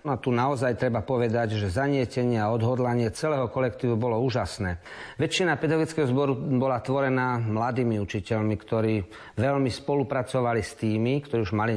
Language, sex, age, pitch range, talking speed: Slovak, male, 40-59, 110-135 Hz, 145 wpm